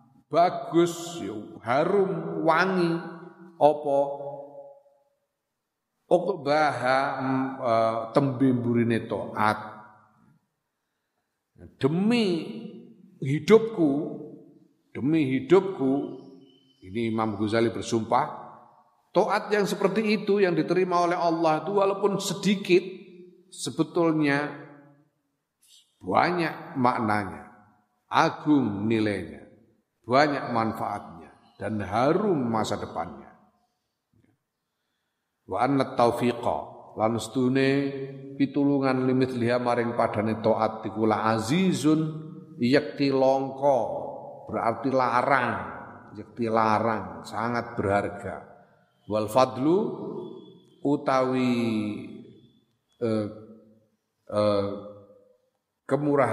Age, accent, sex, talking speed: 50-69, native, male, 60 wpm